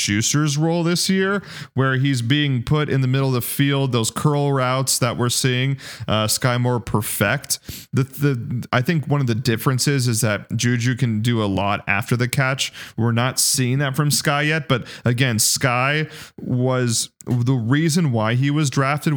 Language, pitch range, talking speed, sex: English, 115-140 Hz, 185 wpm, male